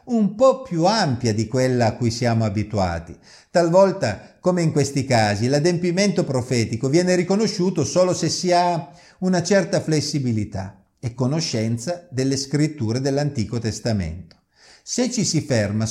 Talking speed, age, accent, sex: 135 wpm, 50-69, native, male